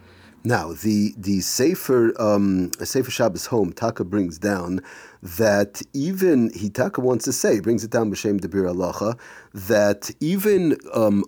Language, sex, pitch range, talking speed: English, male, 100-140 Hz, 140 wpm